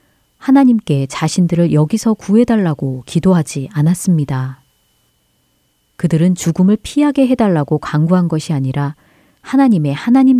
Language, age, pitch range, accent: Korean, 40-59, 145-205 Hz, native